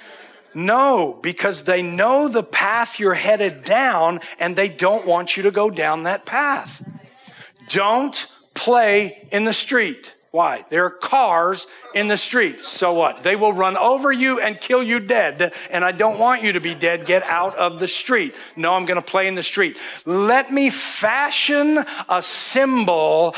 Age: 50-69